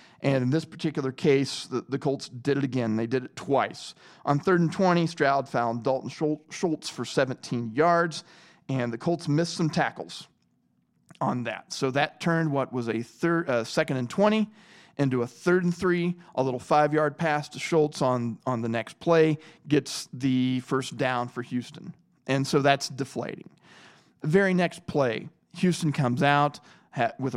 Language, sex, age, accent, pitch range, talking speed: English, male, 40-59, American, 130-165 Hz, 170 wpm